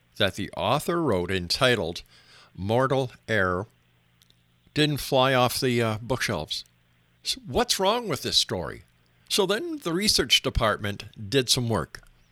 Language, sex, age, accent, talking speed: English, male, 50-69, American, 130 wpm